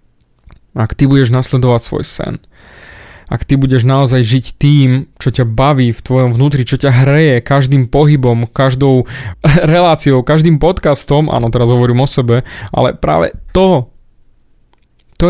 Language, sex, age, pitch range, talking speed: Slovak, male, 20-39, 130-175 Hz, 140 wpm